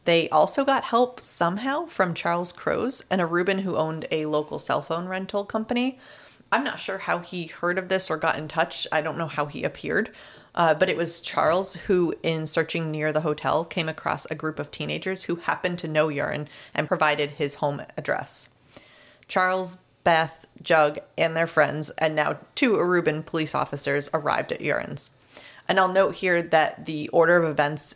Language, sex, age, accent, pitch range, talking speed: English, female, 30-49, American, 155-185 Hz, 185 wpm